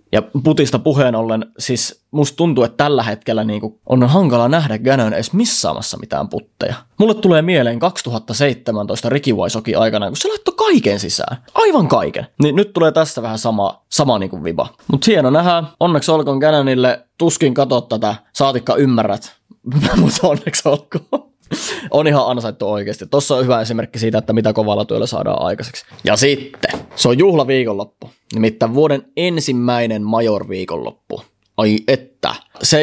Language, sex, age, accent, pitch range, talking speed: Finnish, male, 20-39, native, 110-140 Hz, 150 wpm